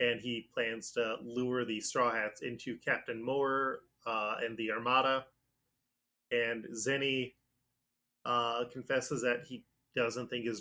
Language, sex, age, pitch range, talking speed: English, male, 20-39, 120-130 Hz, 135 wpm